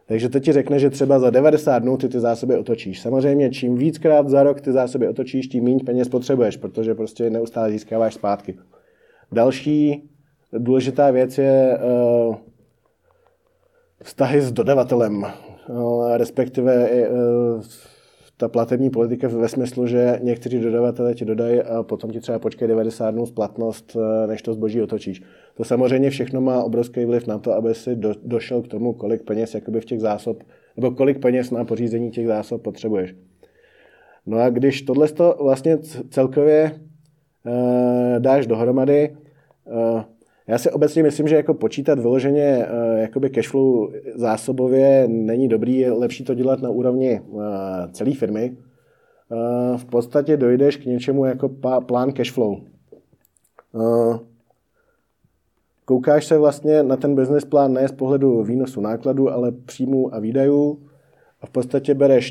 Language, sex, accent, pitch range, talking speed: Czech, male, native, 115-135 Hz, 140 wpm